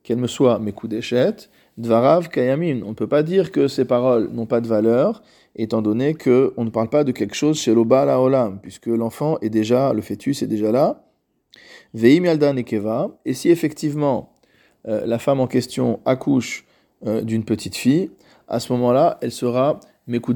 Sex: male